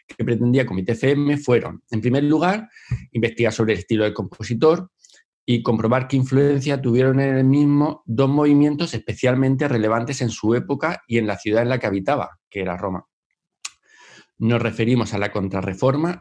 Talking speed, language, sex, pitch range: 165 wpm, Spanish, male, 110-145 Hz